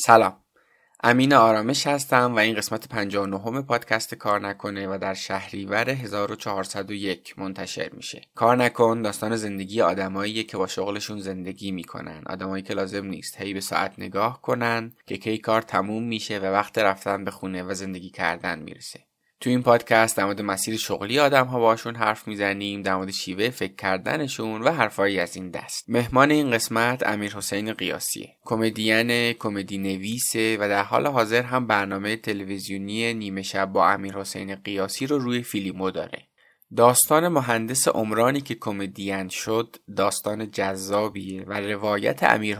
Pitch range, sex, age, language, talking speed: 100-115 Hz, male, 20-39, Persian, 150 wpm